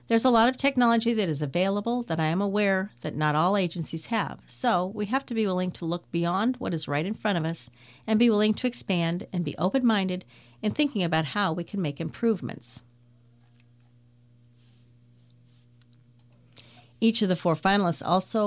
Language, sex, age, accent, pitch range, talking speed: English, female, 40-59, American, 160-215 Hz, 180 wpm